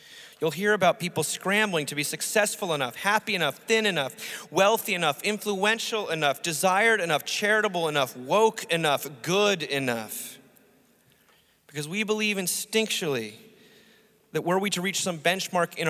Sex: male